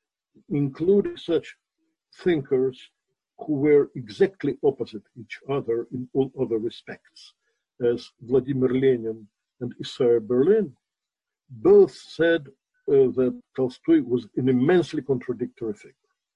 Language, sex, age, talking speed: English, male, 50-69, 105 wpm